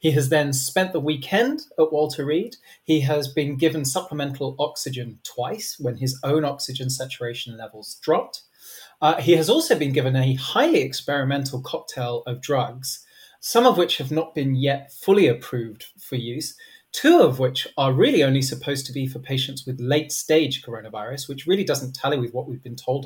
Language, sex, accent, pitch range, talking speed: English, male, British, 130-155 Hz, 180 wpm